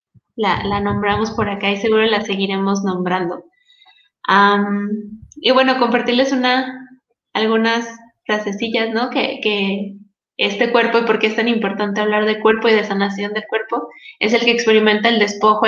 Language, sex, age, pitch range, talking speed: Spanish, female, 20-39, 195-230 Hz, 160 wpm